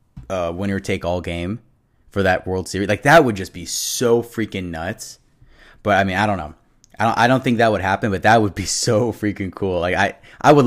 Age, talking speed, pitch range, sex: 20-39, 230 wpm, 95-115 Hz, male